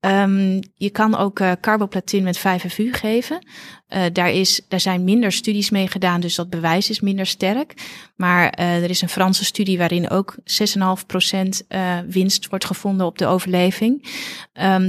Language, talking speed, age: Dutch, 170 wpm, 30-49